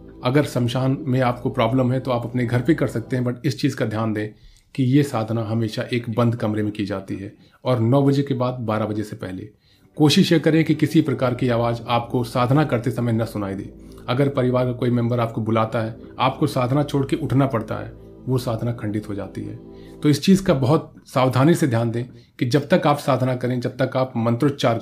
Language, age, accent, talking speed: Hindi, 30-49, native, 225 wpm